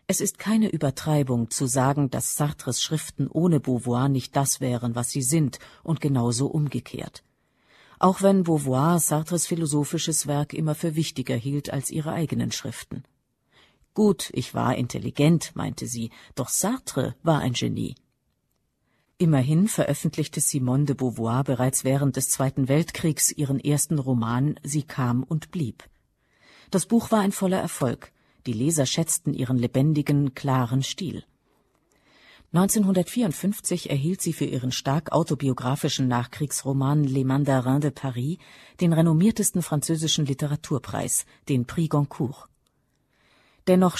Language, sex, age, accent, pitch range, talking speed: German, female, 50-69, German, 130-160 Hz, 130 wpm